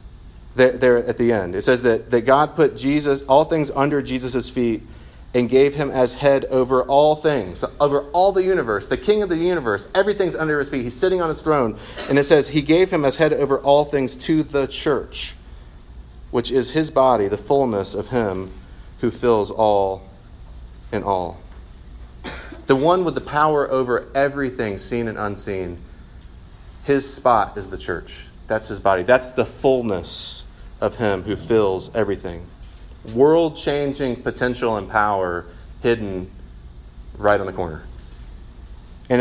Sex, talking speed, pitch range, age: male, 160 wpm, 95-140 Hz, 30-49